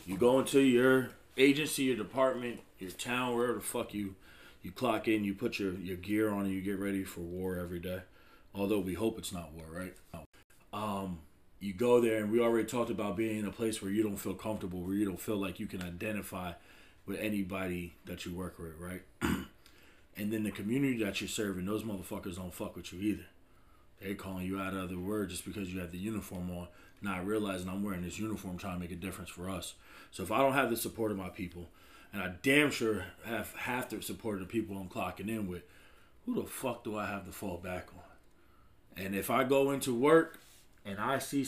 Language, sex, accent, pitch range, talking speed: English, male, American, 95-120 Hz, 225 wpm